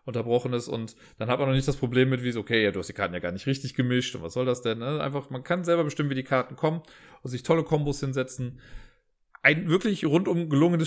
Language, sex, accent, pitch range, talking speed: German, male, German, 125-150 Hz, 265 wpm